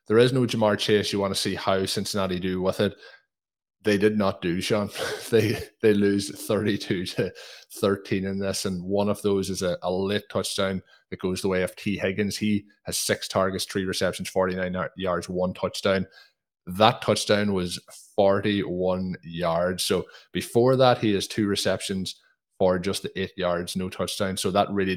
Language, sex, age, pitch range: English, male, 20-39, 90-100 Hz